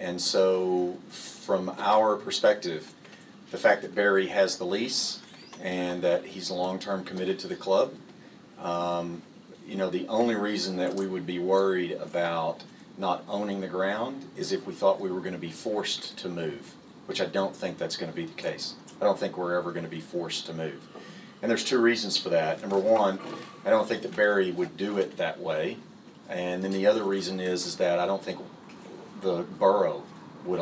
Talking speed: 200 wpm